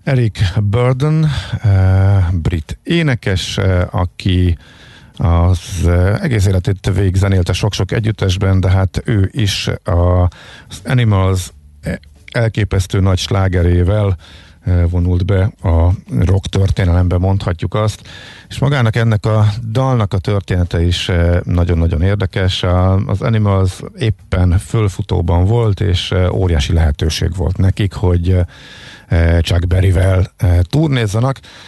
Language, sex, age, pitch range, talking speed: Hungarian, male, 50-69, 90-110 Hz, 95 wpm